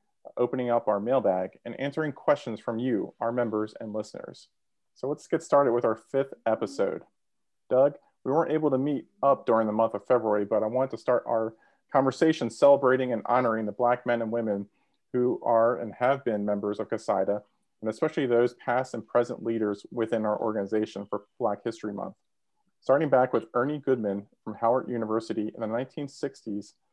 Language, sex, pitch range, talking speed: English, male, 110-125 Hz, 180 wpm